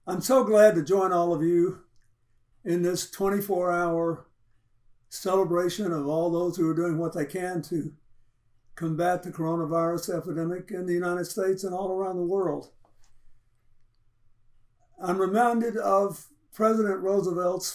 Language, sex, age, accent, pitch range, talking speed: English, male, 60-79, American, 120-190 Hz, 140 wpm